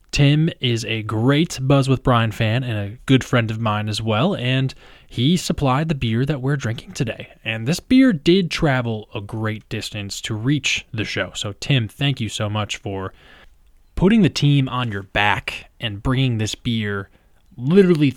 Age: 20-39